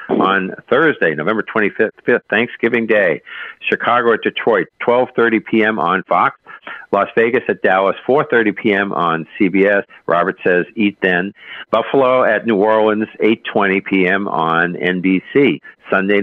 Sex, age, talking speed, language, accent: male, 50-69, 125 wpm, English, American